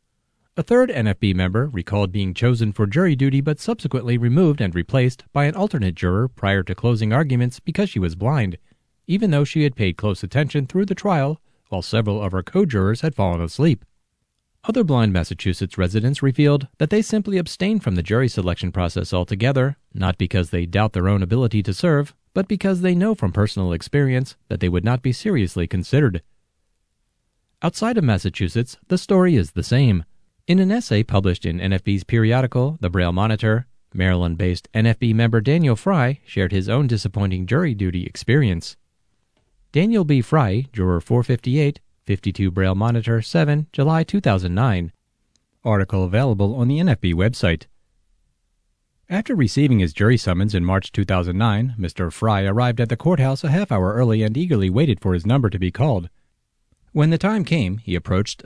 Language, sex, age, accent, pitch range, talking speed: English, male, 40-59, American, 95-145 Hz, 165 wpm